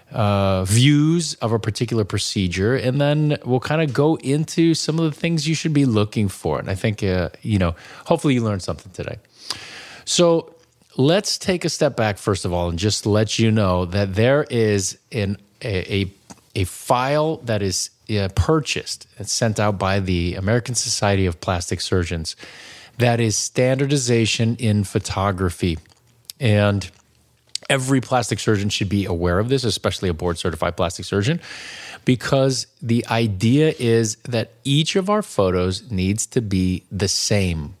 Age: 30-49